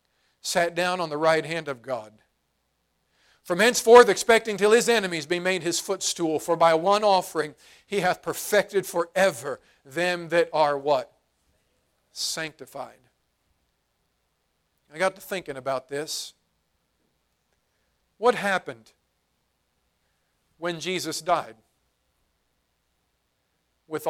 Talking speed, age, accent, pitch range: 105 wpm, 50-69, American, 145-195 Hz